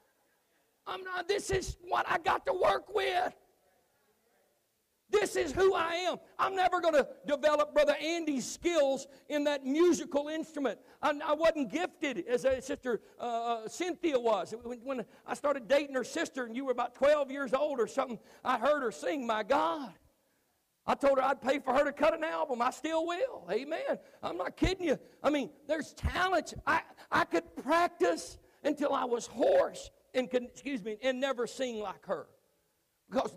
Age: 50-69